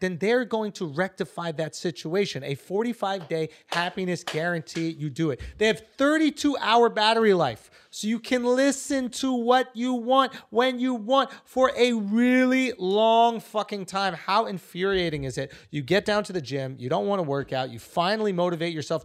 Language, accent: English, American